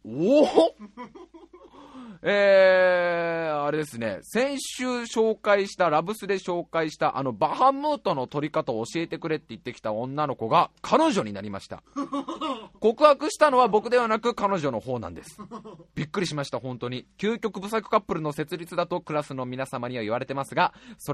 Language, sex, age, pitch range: Japanese, male, 20-39, 145-235 Hz